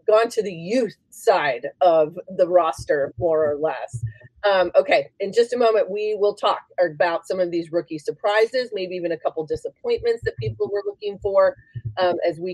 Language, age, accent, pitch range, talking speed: English, 30-49, American, 165-230 Hz, 185 wpm